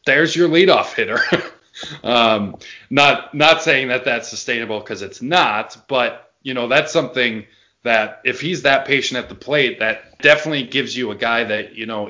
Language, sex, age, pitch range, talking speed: English, male, 20-39, 115-140 Hz, 180 wpm